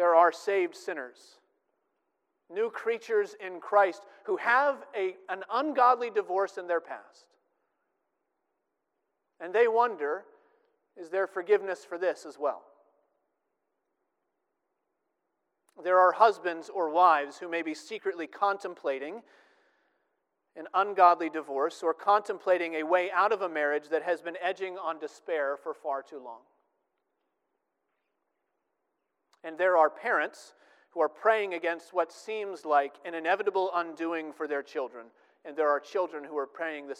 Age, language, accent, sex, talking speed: 40-59, English, American, male, 135 wpm